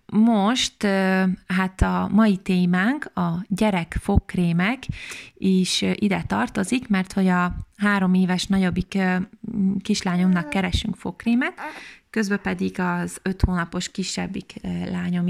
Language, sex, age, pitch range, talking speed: Hungarian, female, 20-39, 185-220 Hz, 105 wpm